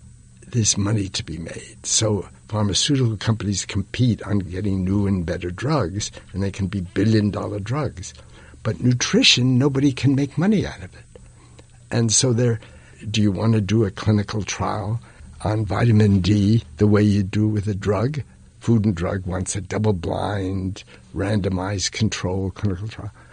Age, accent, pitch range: 60-79, American, 100-120 Hz